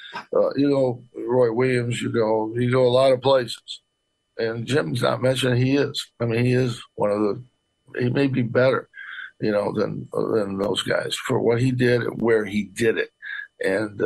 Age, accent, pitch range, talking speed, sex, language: 60-79, American, 115-140 Hz, 205 wpm, male, English